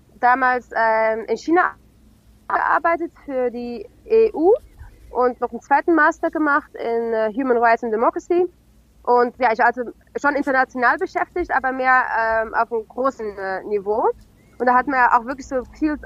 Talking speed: 165 wpm